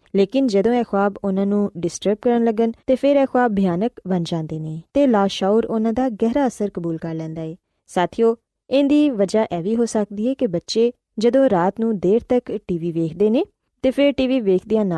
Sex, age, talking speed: female, 20-39, 200 wpm